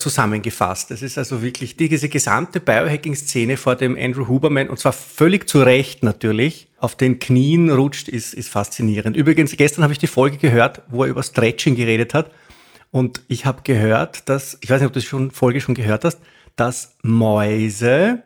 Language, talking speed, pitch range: German, 180 wpm, 125-160 Hz